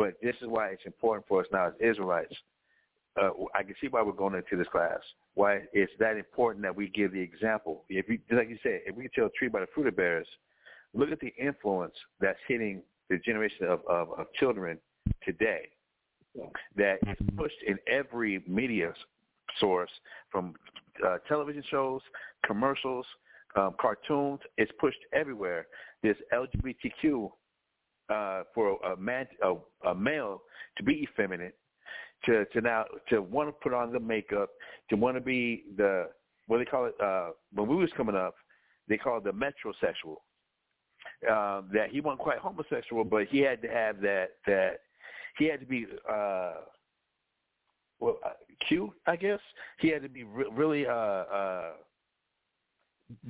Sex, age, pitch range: male, 60-79, 110-155 Hz